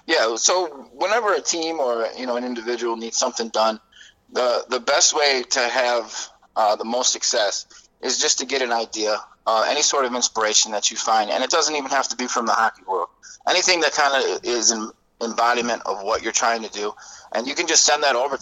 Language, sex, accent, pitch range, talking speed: English, male, American, 115-130 Hz, 220 wpm